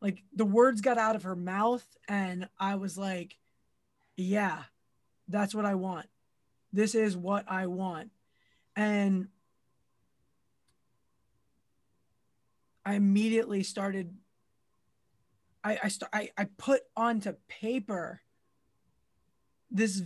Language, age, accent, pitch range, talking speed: English, 20-39, American, 185-210 Hz, 105 wpm